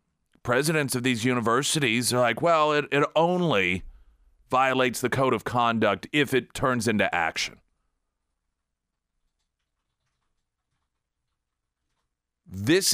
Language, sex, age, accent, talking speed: English, male, 40-59, American, 95 wpm